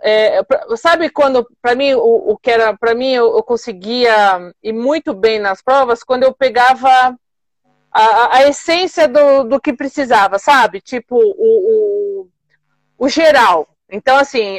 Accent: Brazilian